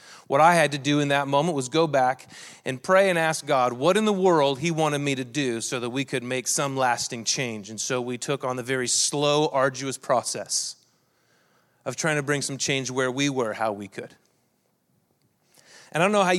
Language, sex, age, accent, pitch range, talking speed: English, male, 30-49, American, 140-185 Hz, 220 wpm